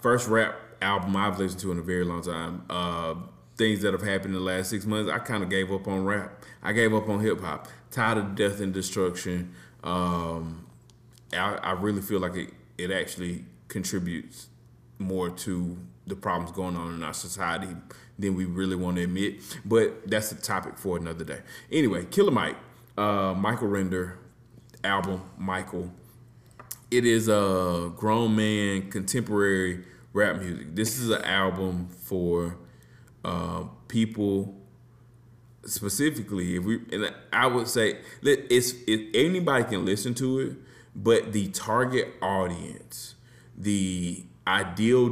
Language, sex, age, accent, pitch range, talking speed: English, male, 30-49, American, 90-110 Hz, 150 wpm